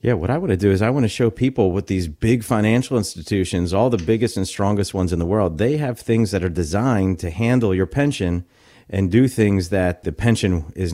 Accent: American